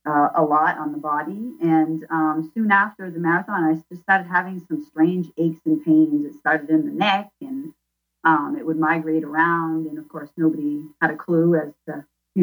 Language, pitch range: English, 155-195 Hz